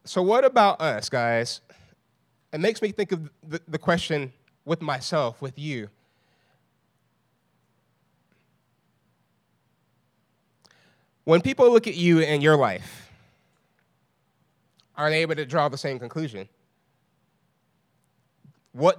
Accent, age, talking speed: American, 30-49, 105 wpm